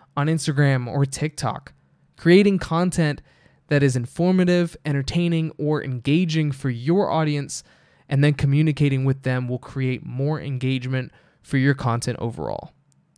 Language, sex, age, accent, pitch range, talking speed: English, male, 20-39, American, 130-160 Hz, 125 wpm